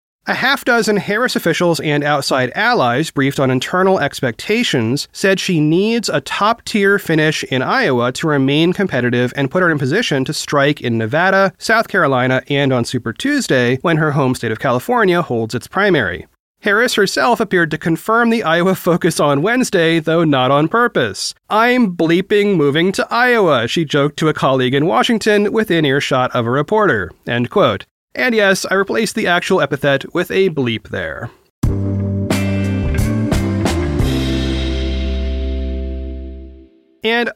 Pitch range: 130-205 Hz